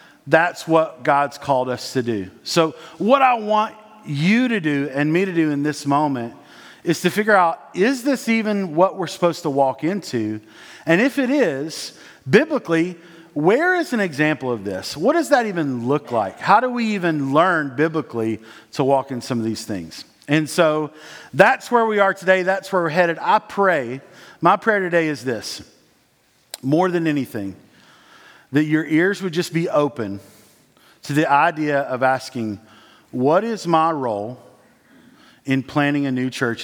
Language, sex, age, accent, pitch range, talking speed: English, male, 40-59, American, 130-185 Hz, 175 wpm